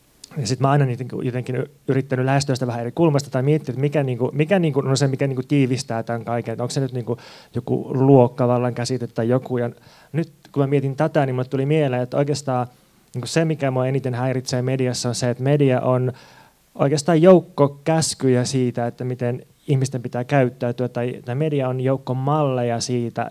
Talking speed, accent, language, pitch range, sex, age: 195 wpm, native, Finnish, 120-140 Hz, male, 20-39